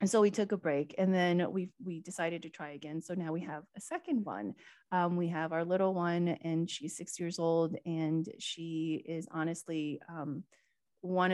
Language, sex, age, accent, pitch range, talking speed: English, female, 20-39, American, 165-210 Hz, 200 wpm